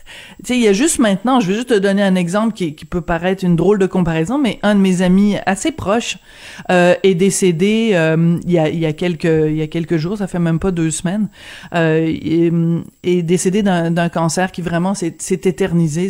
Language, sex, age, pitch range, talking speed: French, female, 40-59, 180-230 Hz, 240 wpm